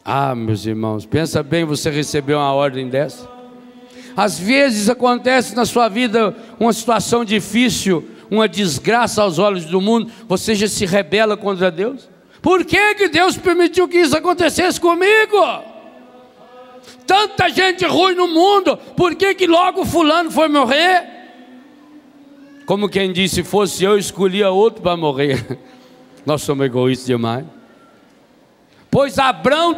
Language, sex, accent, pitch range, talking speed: Portuguese, male, Brazilian, 190-300 Hz, 135 wpm